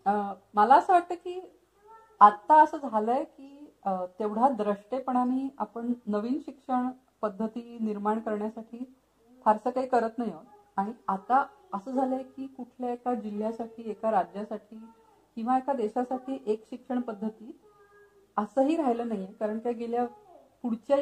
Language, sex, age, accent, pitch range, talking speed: Marathi, female, 40-59, native, 205-255 Hz, 125 wpm